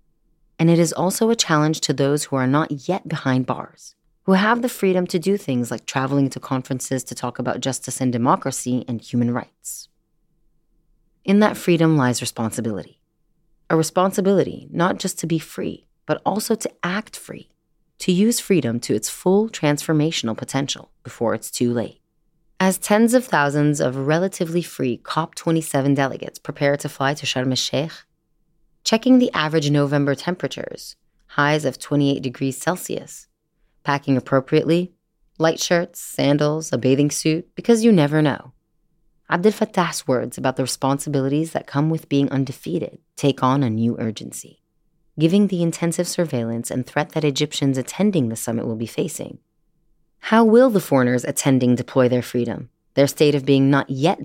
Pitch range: 135-170 Hz